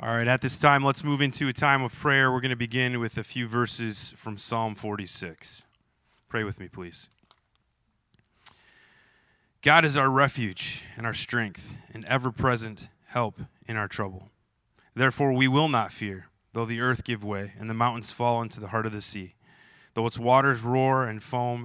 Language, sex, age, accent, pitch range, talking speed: English, male, 20-39, American, 105-125 Hz, 185 wpm